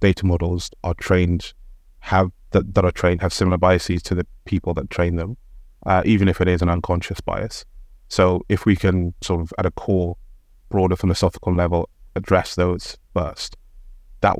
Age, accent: 30-49, British